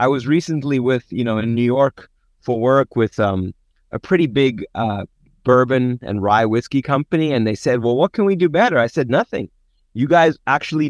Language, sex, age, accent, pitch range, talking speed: English, male, 30-49, American, 125-170 Hz, 205 wpm